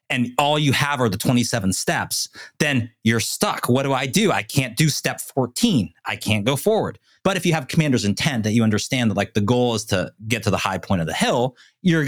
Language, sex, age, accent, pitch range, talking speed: English, male, 30-49, American, 110-140 Hz, 240 wpm